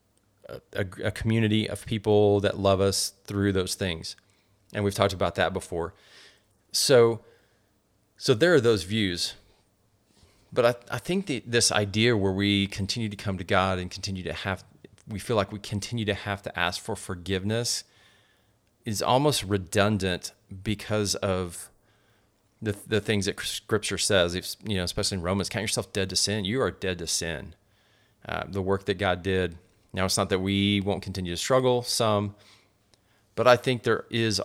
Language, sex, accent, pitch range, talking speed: English, male, American, 95-105 Hz, 175 wpm